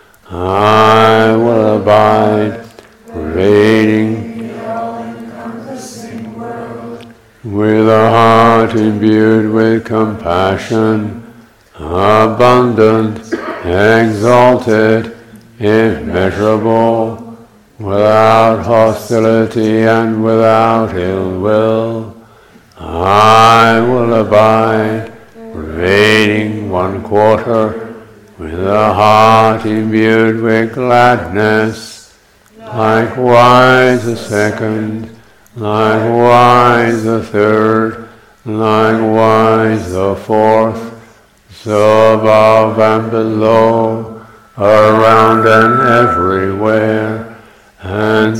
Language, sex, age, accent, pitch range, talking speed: English, male, 60-79, American, 110-115 Hz, 65 wpm